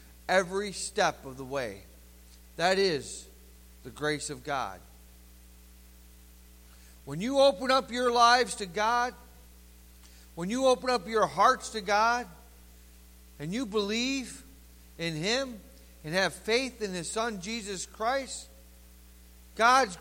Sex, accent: male, American